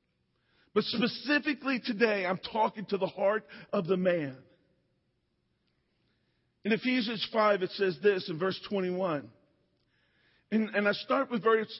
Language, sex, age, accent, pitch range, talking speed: English, male, 40-59, American, 190-235 Hz, 130 wpm